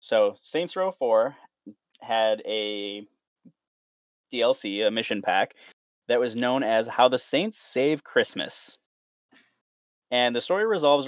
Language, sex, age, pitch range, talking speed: English, male, 20-39, 105-150 Hz, 125 wpm